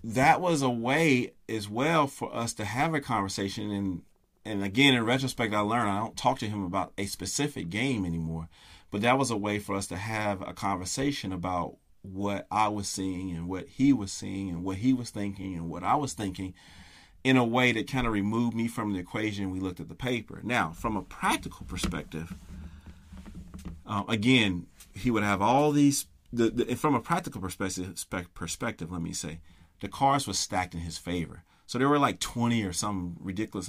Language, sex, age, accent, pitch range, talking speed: English, male, 40-59, American, 90-115 Hz, 200 wpm